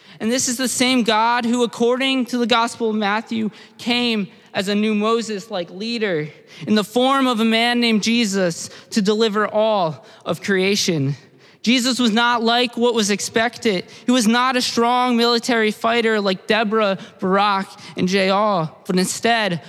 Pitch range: 200-240 Hz